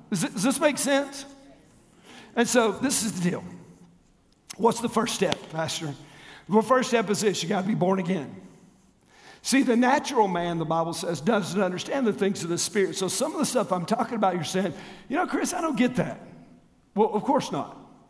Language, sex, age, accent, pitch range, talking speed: English, male, 50-69, American, 185-250 Hz, 205 wpm